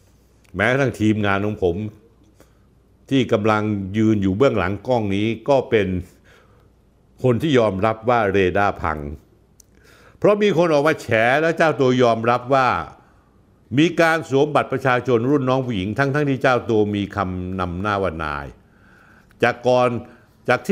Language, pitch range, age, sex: Thai, 95-125 Hz, 60-79, male